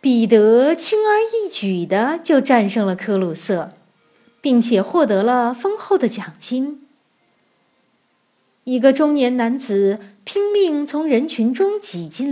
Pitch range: 205-330 Hz